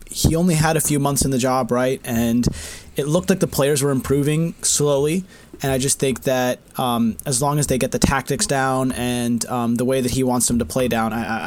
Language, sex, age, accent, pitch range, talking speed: English, male, 20-39, American, 120-145 Hz, 235 wpm